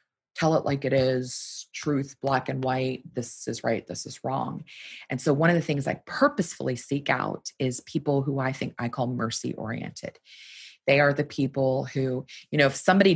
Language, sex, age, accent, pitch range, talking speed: English, female, 20-39, American, 135-170 Hz, 195 wpm